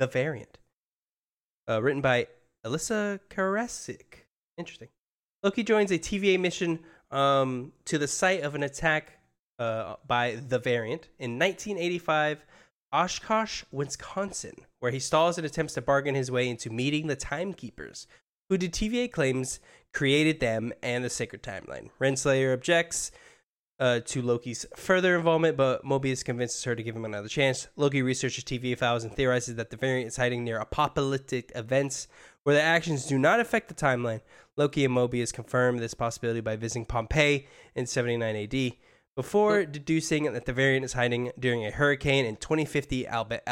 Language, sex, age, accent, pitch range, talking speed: English, male, 10-29, American, 120-160 Hz, 155 wpm